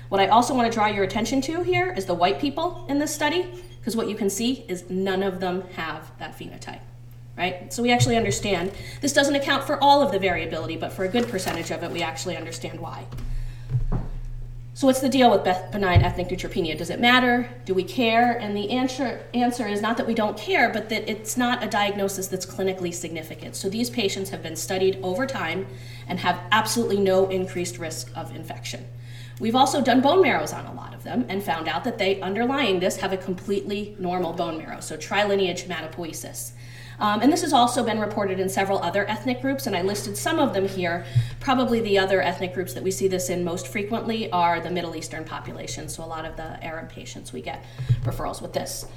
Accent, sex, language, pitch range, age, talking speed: American, female, English, 160-225 Hz, 30-49, 215 wpm